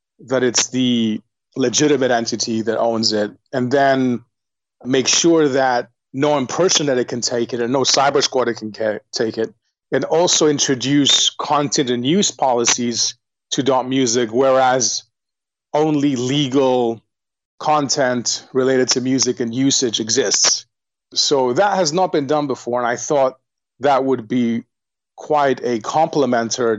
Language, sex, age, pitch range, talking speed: English, male, 30-49, 115-135 Hz, 135 wpm